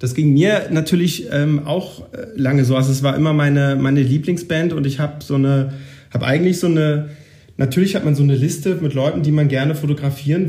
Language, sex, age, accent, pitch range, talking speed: German, male, 40-59, German, 125-155 Hz, 205 wpm